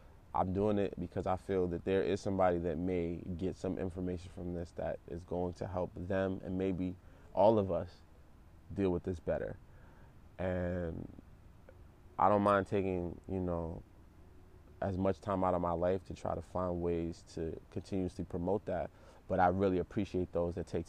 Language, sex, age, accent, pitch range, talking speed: English, male, 20-39, American, 90-95 Hz, 180 wpm